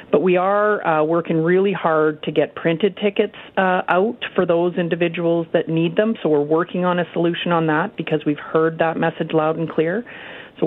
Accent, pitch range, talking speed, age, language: American, 155-175 Hz, 200 wpm, 40-59, English